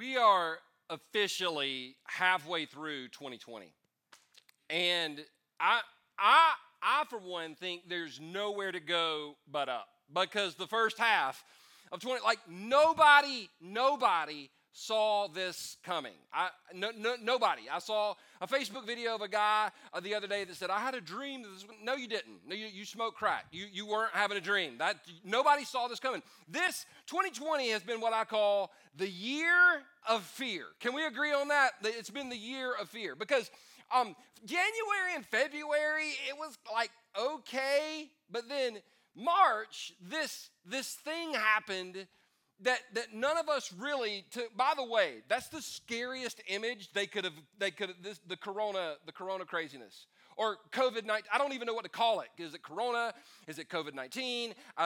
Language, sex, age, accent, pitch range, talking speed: English, male, 40-59, American, 185-255 Hz, 170 wpm